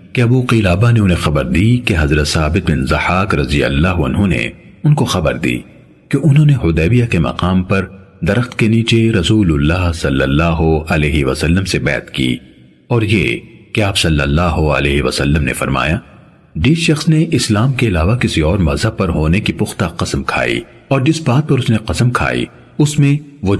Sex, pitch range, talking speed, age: male, 80-125 Hz, 180 wpm, 50-69